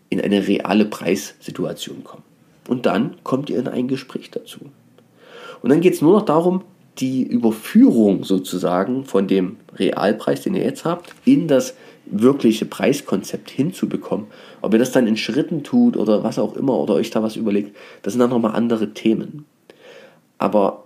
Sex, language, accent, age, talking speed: male, German, German, 30-49, 165 wpm